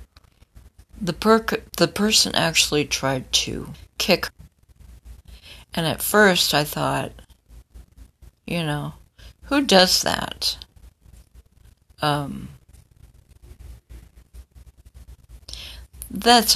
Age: 60-79